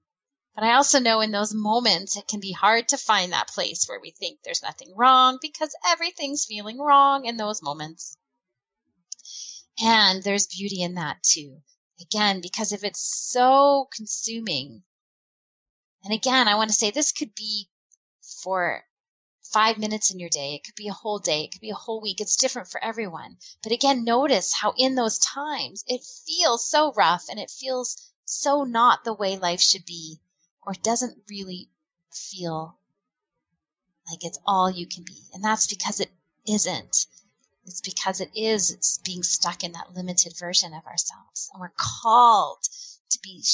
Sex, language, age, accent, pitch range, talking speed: female, English, 10-29, American, 185-245 Hz, 170 wpm